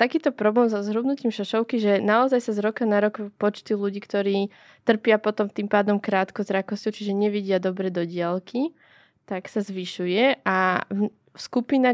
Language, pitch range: Slovak, 195-225 Hz